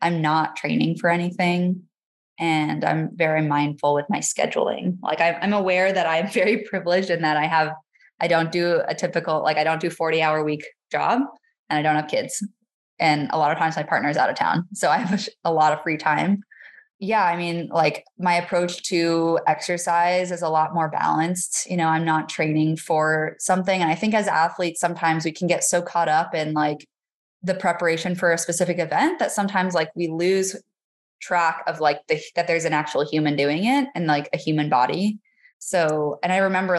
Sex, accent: female, American